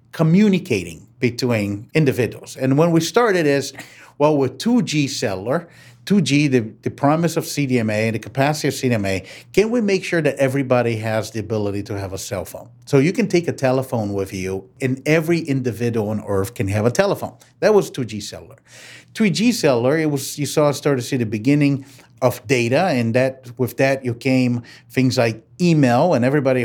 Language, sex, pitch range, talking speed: English, male, 120-150 Hz, 185 wpm